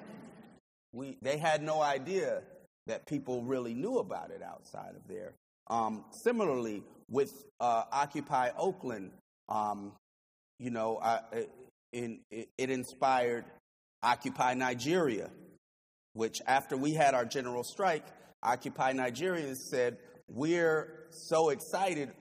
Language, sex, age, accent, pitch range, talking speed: English, male, 30-49, American, 120-170 Hz, 115 wpm